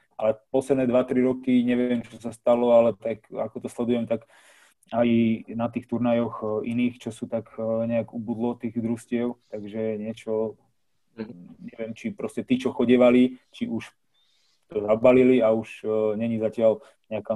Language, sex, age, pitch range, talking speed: Slovak, male, 20-39, 110-125 Hz, 150 wpm